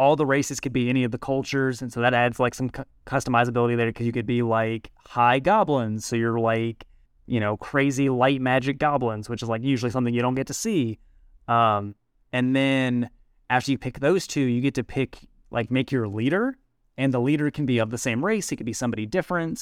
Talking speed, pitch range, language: 225 wpm, 115-135 Hz, English